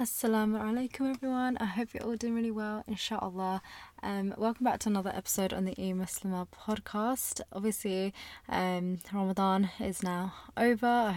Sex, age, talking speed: female, 20-39, 155 wpm